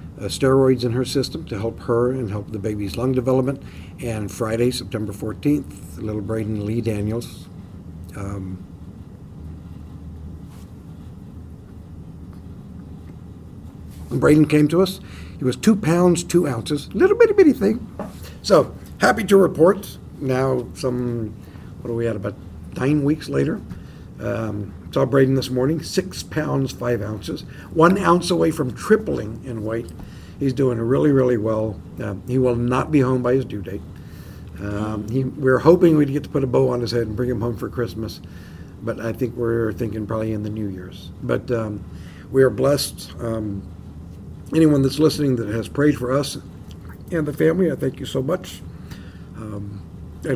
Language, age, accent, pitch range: English, 60-79, American, 95-130 Hz